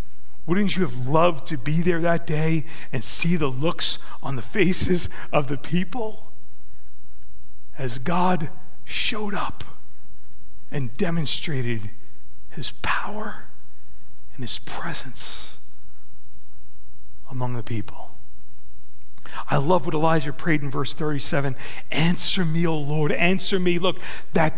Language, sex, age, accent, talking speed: English, male, 40-59, American, 120 wpm